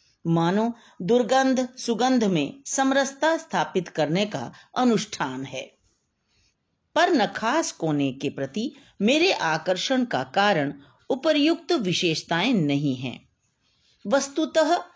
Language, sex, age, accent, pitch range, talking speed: Hindi, female, 50-69, native, 165-250 Hz, 100 wpm